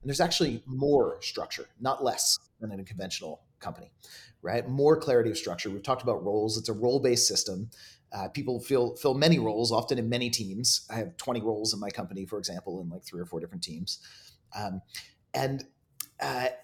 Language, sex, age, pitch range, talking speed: English, male, 30-49, 115-150 Hz, 190 wpm